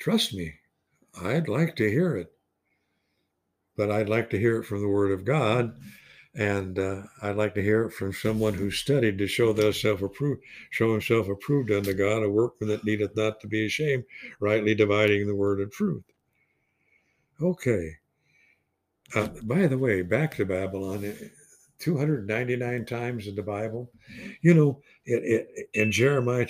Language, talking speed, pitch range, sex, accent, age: English, 160 wpm, 100-130 Hz, male, American, 60-79